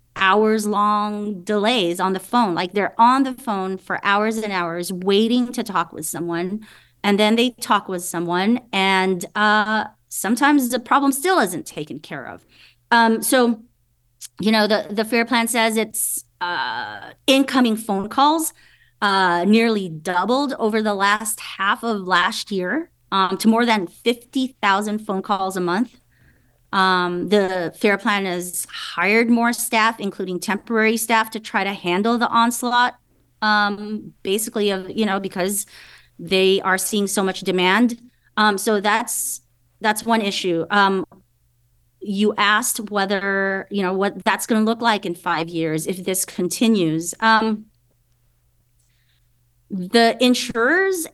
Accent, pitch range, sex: American, 185-225 Hz, female